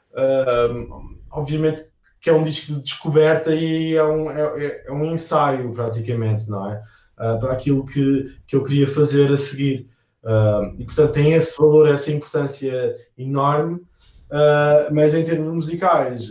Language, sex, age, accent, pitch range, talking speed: Portuguese, male, 20-39, Brazilian, 120-150 Hz, 155 wpm